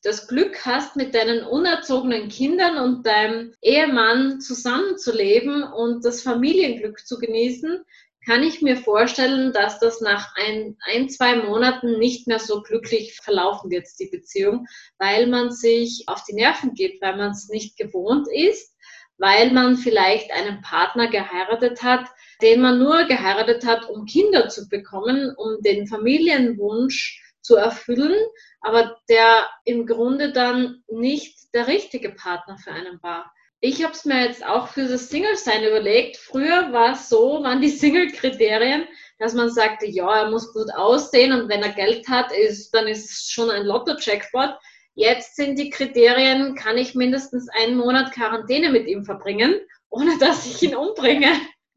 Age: 20-39